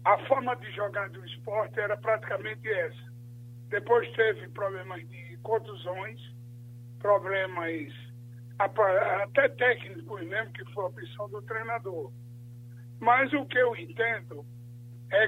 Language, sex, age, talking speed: Portuguese, male, 60-79, 120 wpm